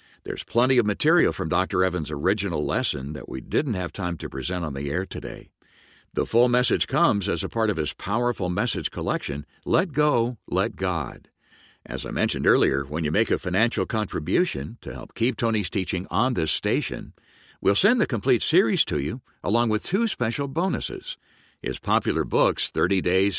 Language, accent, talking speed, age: English, American, 180 wpm, 60-79